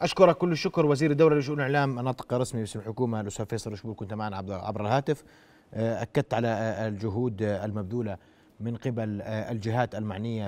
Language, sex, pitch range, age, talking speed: Arabic, male, 105-125 Hz, 30-49, 145 wpm